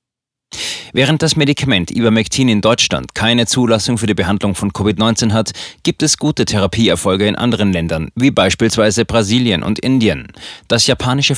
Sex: male